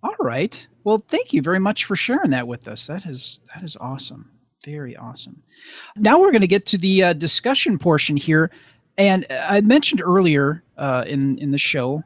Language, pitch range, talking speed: English, 130-170 Hz, 195 wpm